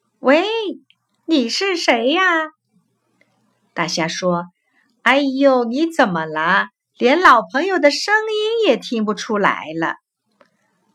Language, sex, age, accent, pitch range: Chinese, female, 50-69, native, 220-355 Hz